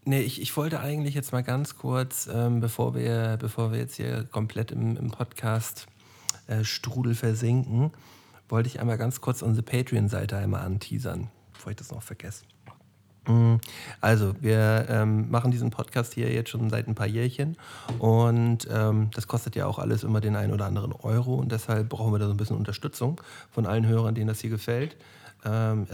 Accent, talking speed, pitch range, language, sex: German, 185 wpm, 110-125 Hz, German, male